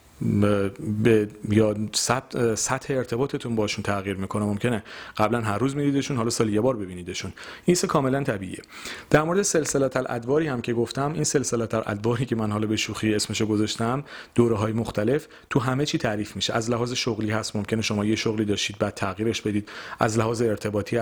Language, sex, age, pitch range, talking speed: Persian, male, 40-59, 110-140 Hz, 185 wpm